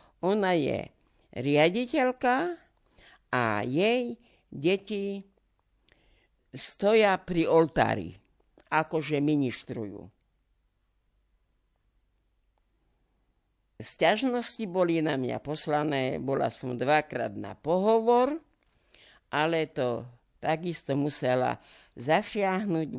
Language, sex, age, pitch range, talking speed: Slovak, female, 50-69, 120-200 Hz, 70 wpm